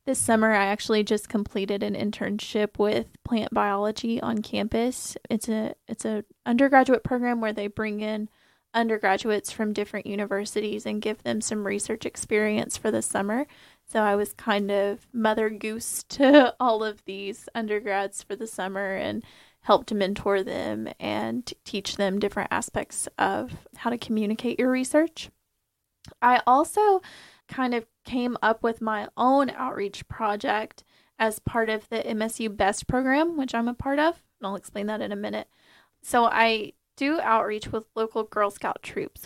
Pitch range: 205-235 Hz